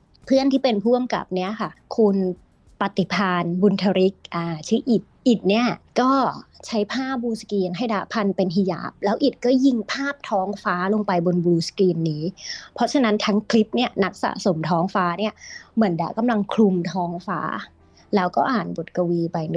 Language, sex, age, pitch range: Thai, female, 20-39, 180-230 Hz